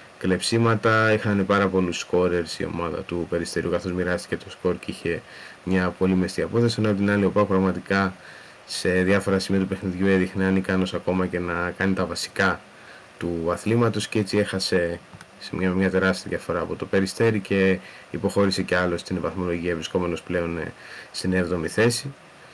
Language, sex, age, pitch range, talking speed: Greek, male, 20-39, 90-100 Hz, 160 wpm